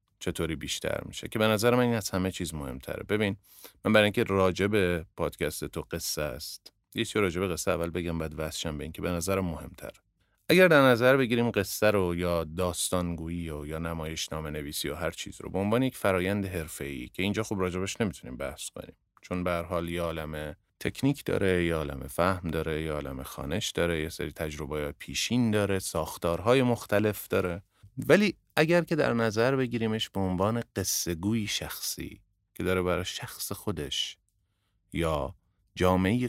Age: 30-49